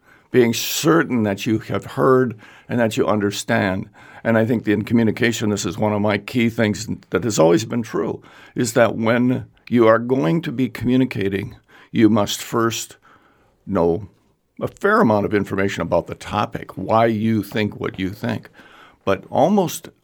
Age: 60-79